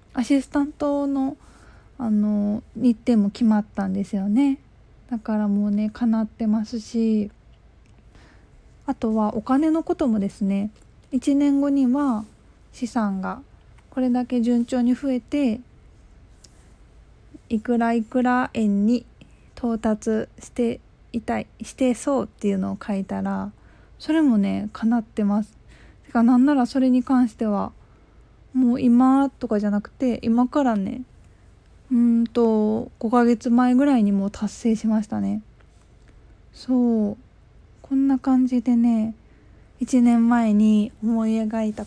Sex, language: female, Japanese